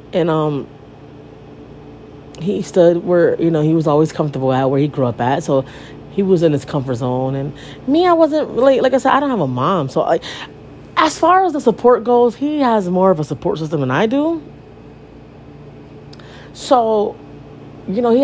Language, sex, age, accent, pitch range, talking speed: English, female, 30-49, American, 145-230 Hz, 195 wpm